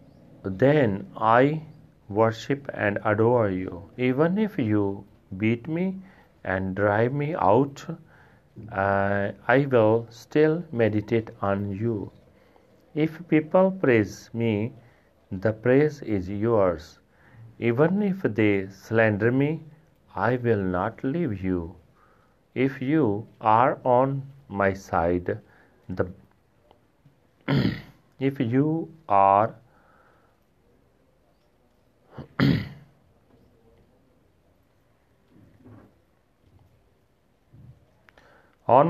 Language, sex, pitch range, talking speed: Punjabi, male, 105-135 Hz, 80 wpm